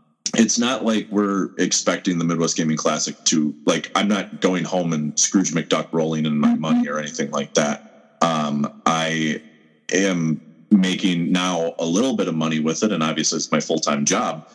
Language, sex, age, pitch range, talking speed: English, male, 30-49, 80-100 Hz, 180 wpm